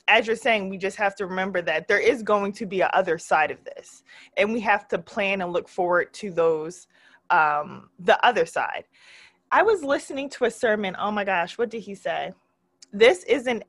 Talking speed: 210 wpm